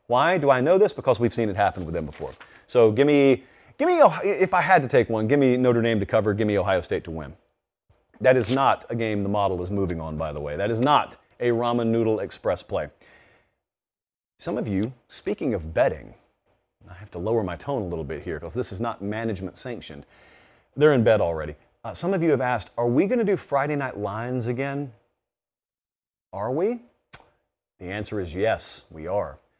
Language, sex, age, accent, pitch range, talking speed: English, male, 40-59, American, 110-130 Hz, 215 wpm